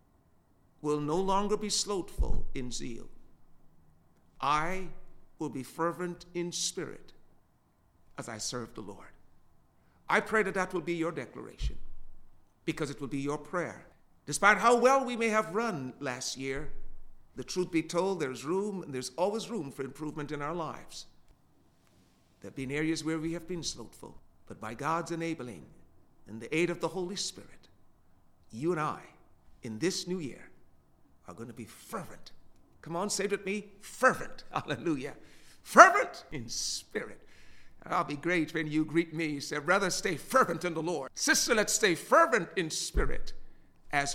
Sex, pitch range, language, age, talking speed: male, 130-195 Hz, English, 50-69, 165 wpm